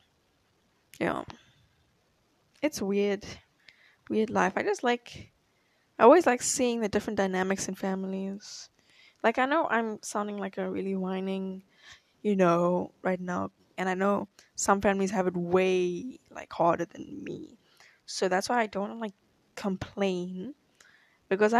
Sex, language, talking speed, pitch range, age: female, English, 140 wpm, 190-240 Hz, 10-29